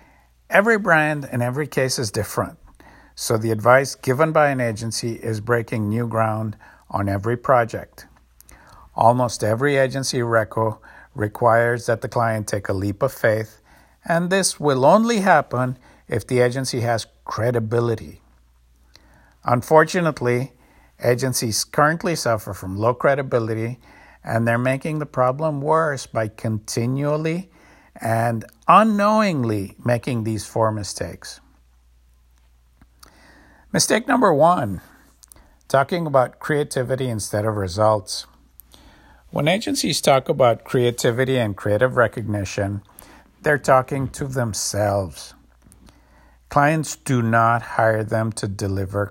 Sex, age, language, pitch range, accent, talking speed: male, 50-69, English, 105-130 Hz, American, 115 wpm